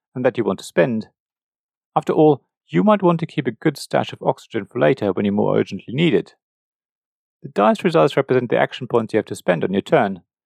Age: 40-59